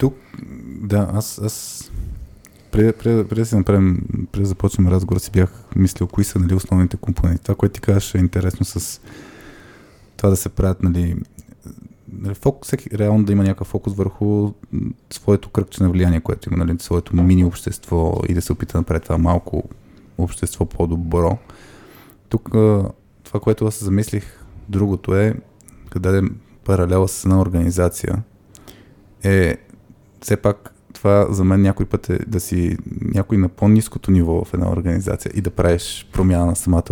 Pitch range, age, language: 90-105 Hz, 20-39, Bulgarian